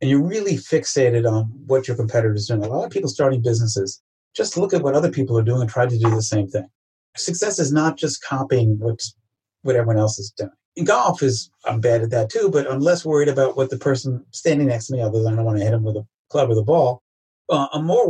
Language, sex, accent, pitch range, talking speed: English, male, American, 115-155 Hz, 260 wpm